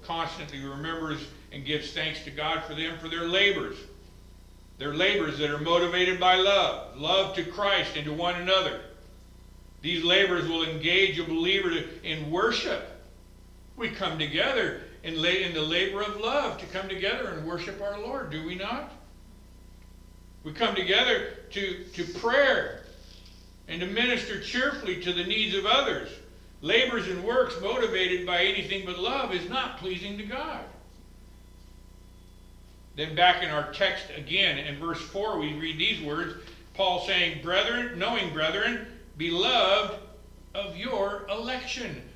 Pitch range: 145-205 Hz